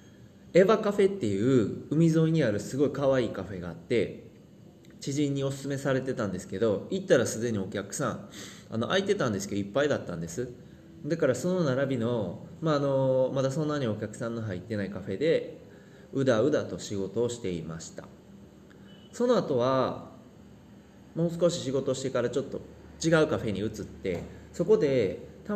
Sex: male